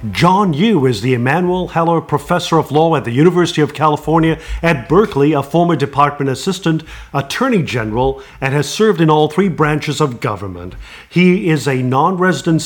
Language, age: English, 50-69